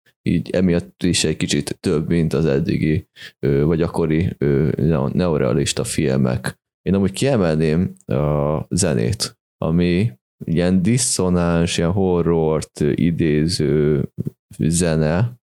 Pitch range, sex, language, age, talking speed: 80-90 Hz, male, Hungarian, 20-39, 95 wpm